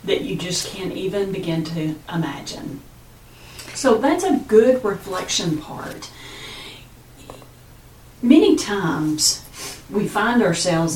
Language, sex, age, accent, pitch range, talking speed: English, female, 40-59, American, 145-205 Hz, 105 wpm